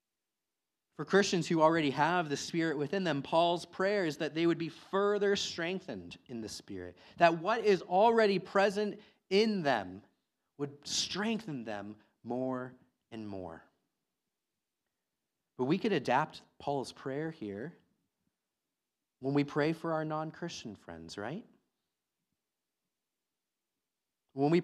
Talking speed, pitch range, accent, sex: 125 wpm, 120-165 Hz, American, male